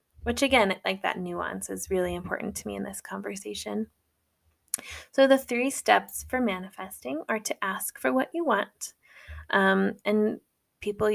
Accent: American